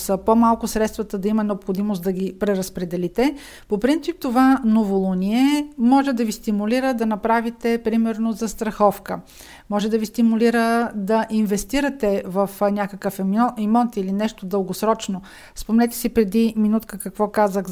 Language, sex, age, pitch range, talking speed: Bulgarian, female, 50-69, 200-230 Hz, 140 wpm